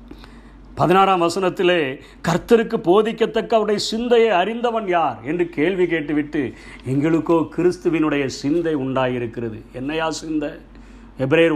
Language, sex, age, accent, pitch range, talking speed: Tamil, male, 50-69, native, 145-180 Hz, 95 wpm